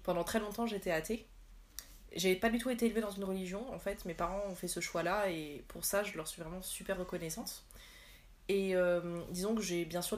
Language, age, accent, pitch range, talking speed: French, 20-39, French, 170-205 Hz, 225 wpm